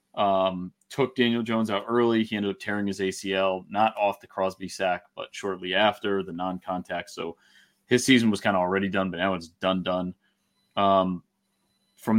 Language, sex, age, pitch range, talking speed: English, male, 30-49, 95-115 Hz, 185 wpm